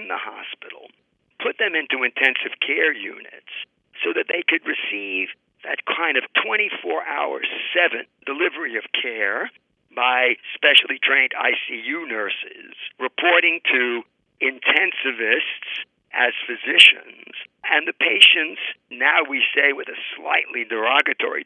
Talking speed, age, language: 115 wpm, 50-69, English